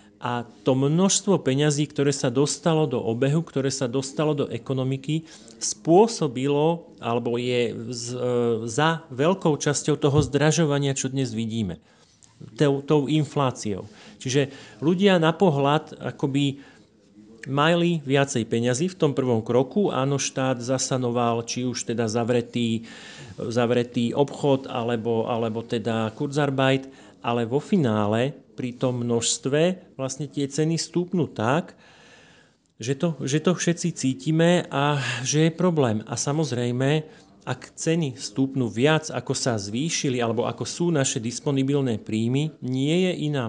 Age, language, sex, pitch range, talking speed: 40-59, Slovak, male, 120-155 Hz, 125 wpm